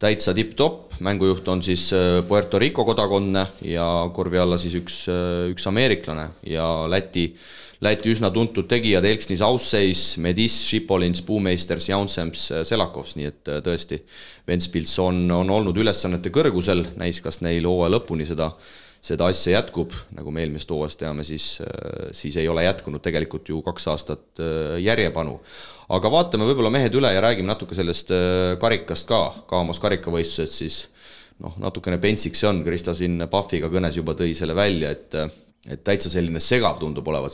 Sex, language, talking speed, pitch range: male, English, 155 wpm, 80-95 Hz